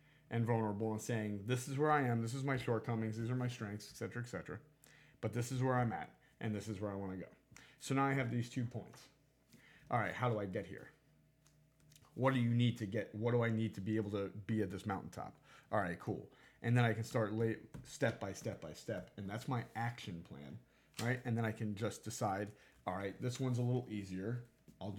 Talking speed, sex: 235 wpm, male